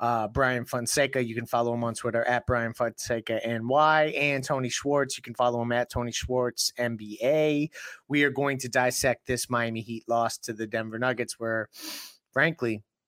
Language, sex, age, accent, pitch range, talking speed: English, male, 30-49, American, 115-140 Hz, 180 wpm